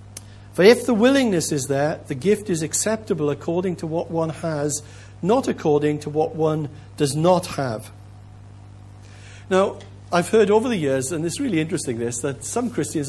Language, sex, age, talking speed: English, male, 60-79, 165 wpm